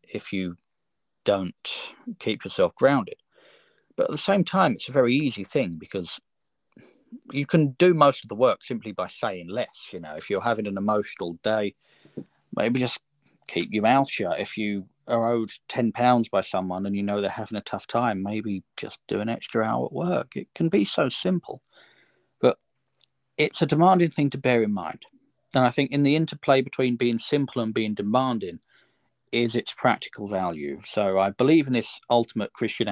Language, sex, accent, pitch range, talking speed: English, male, British, 100-145 Hz, 190 wpm